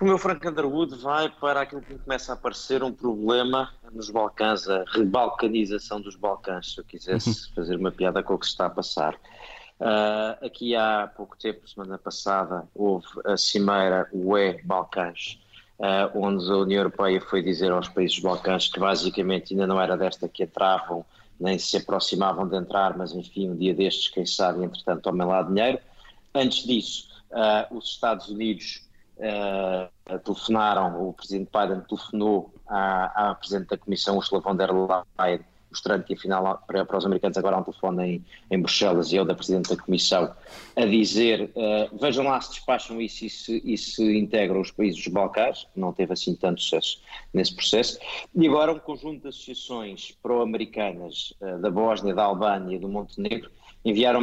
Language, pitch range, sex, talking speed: Portuguese, 95-110 Hz, male, 175 wpm